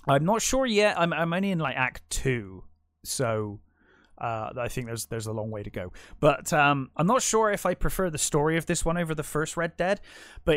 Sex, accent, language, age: male, British, English, 20-39